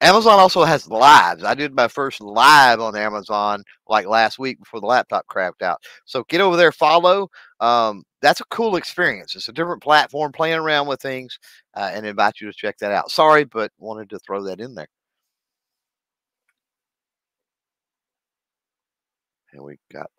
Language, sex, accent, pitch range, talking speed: English, male, American, 95-145 Hz, 165 wpm